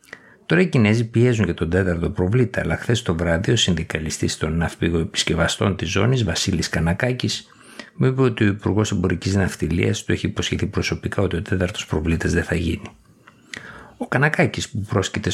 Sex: male